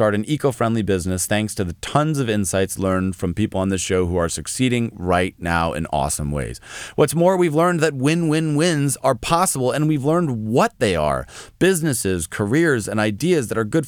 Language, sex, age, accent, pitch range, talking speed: English, male, 30-49, American, 105-145 Hz, 190 wpm